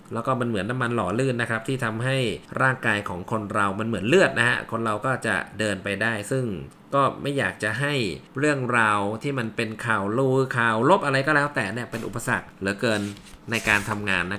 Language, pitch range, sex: Thai, 105-135 Hz, male